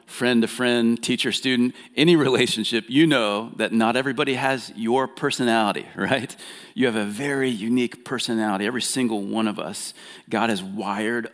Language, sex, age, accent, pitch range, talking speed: English, male, 40-59, American, 105-125 Hz, 160 wpm